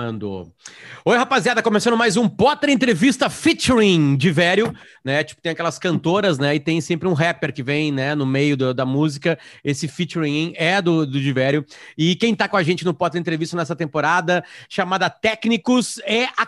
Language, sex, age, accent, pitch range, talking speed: Portuguese, male, 30-49, Brazilian, 160-210 Hz, 180 wpm